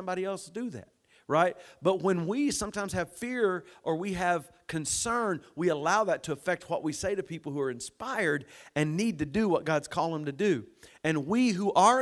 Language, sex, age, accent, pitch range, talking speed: English, male, 50-69, American, 135-175 Hz, 215 wpm